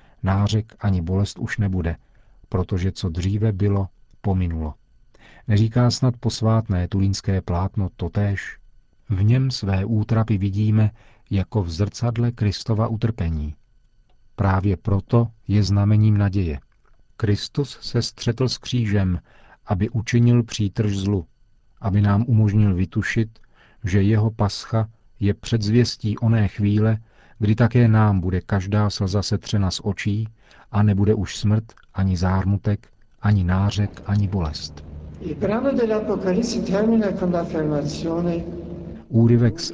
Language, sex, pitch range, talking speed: Czech, male, 95-115 Hz, 110 wpm